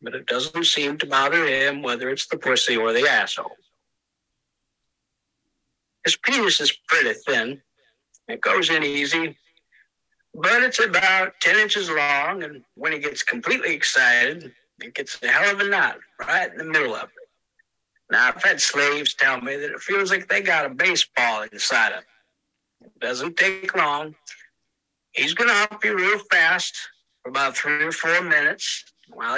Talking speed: 170 wpm